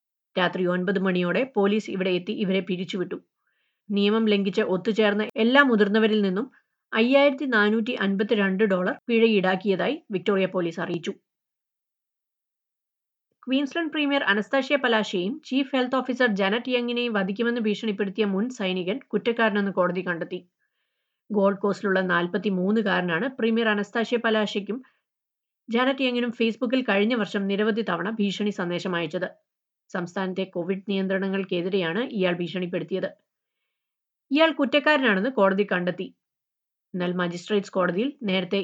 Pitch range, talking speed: 190-240 Hz, 100 wpm